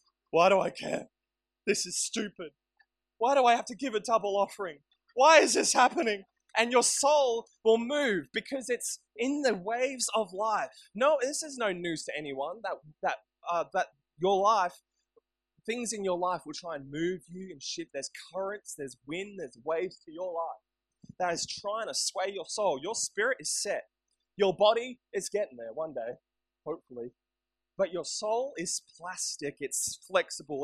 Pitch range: 180-245 Hz